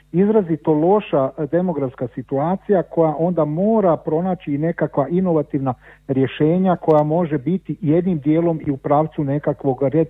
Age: 40-59